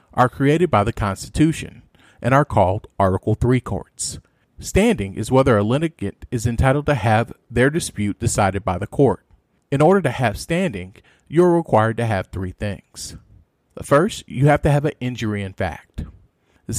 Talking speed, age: 170 wpm, 40-59